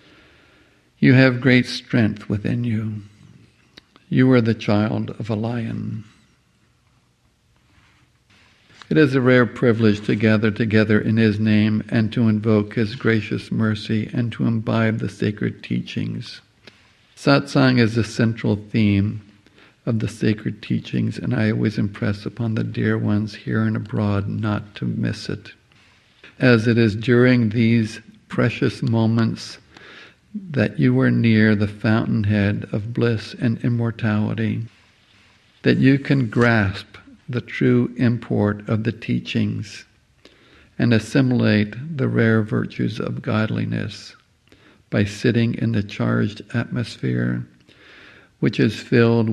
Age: 60-79